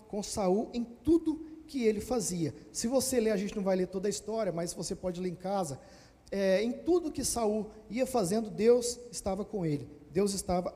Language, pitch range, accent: Portuguese, 180-245 Hz, Brazilian